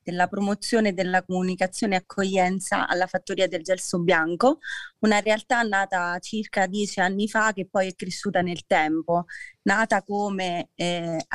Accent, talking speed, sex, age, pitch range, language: native, 145 wpm, female, 30-49, 185-215 Hz, Italian